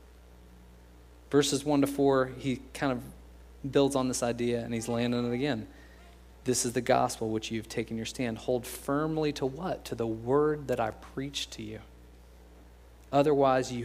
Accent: American